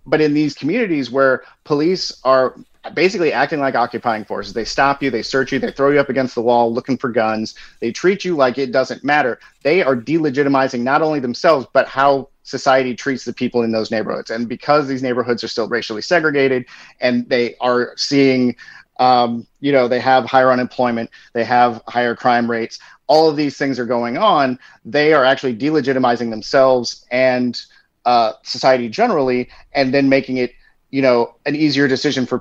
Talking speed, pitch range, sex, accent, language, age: 185 wpm, 120-140 Hz, male, American, English, 30-49